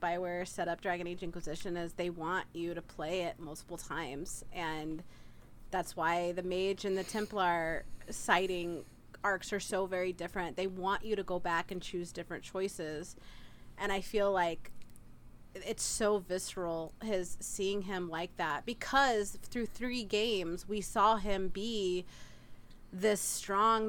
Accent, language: American, English